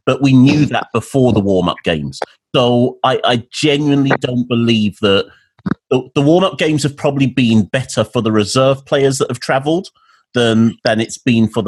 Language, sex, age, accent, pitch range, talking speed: English, male, 30-49, British, 95-120 Hz, 165 wpm